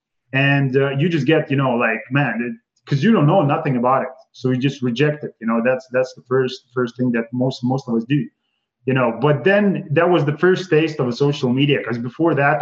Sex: male